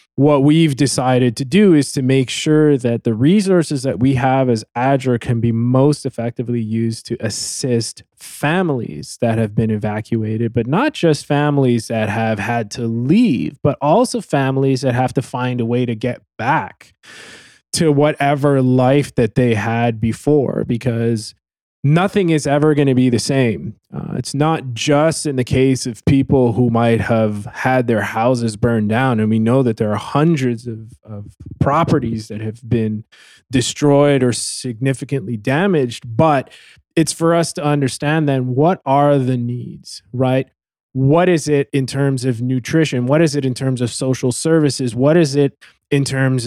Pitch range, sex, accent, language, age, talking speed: 115-145 Hz, male, American, English, 20-39, 170 wpm